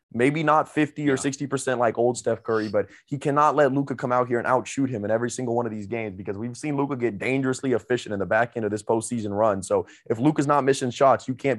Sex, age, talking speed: male, 20-39, 265 wpm